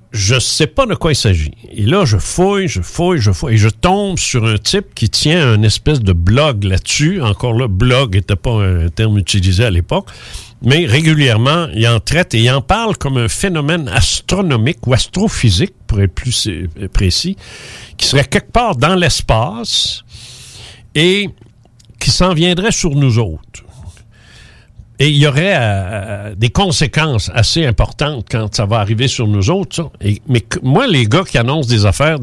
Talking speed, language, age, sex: 180 wpm, French, 60-79, male